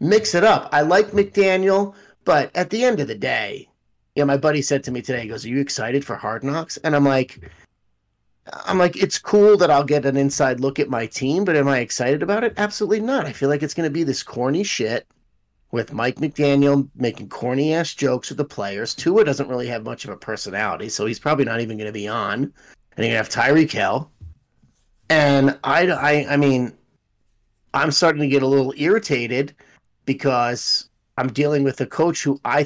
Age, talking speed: 30-49, 215 wpm